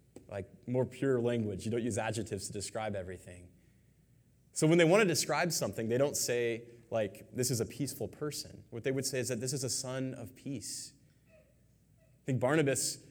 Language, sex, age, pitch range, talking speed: English, male, 20-39, 115-140 Hz, 190 wpm